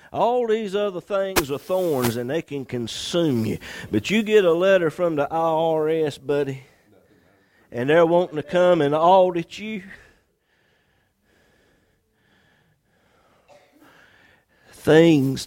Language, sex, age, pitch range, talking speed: English, male, 50-69, 115-160 Hz, 115 wpm